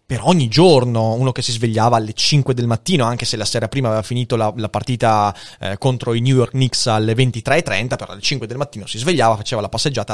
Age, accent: 30-49, native